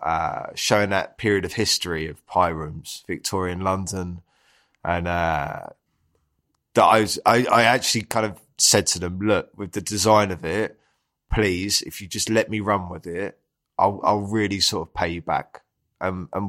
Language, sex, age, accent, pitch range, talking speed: English, male, 20-39, British, 85-100 Hz, 180 wpm